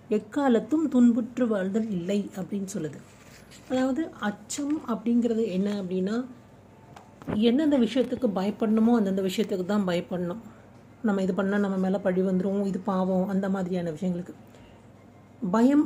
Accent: native